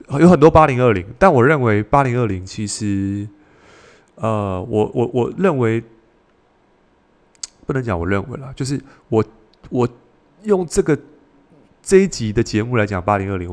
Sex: male